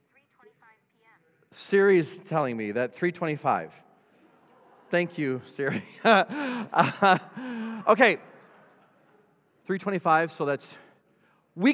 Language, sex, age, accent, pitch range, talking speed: English, male, 40-59, American, 135-205 Hz, 70 wpm